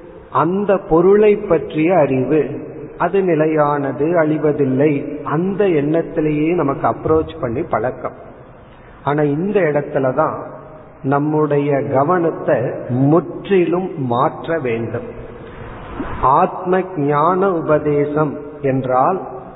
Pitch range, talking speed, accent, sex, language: 135-160 Hz, 75 wpm, native, male, Tamil